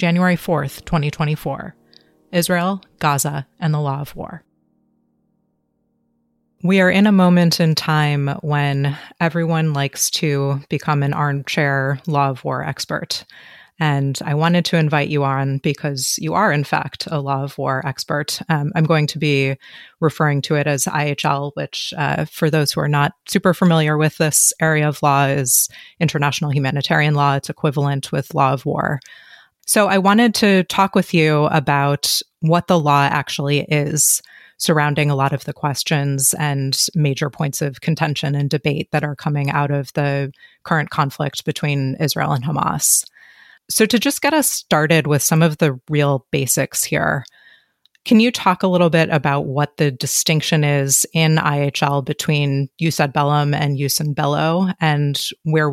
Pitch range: 140-165 Hz